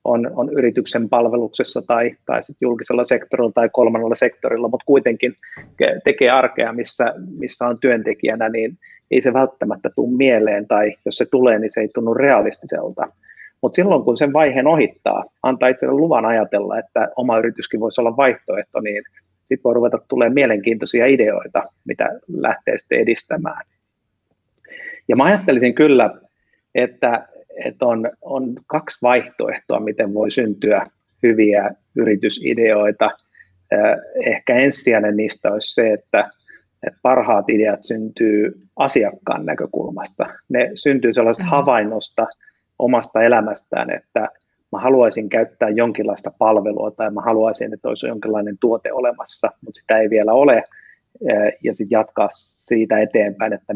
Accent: native